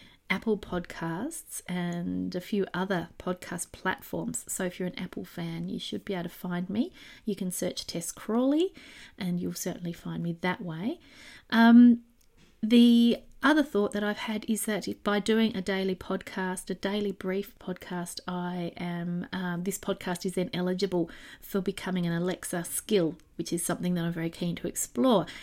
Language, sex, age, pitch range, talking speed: English, female, 30-49, 180-220 Hz, 170 wpm